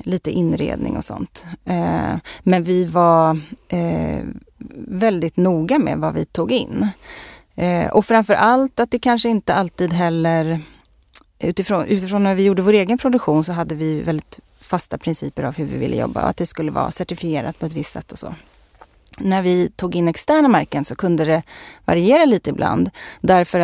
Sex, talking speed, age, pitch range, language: female, 170 wpm, 30-49, 160-195 Hz, Swedish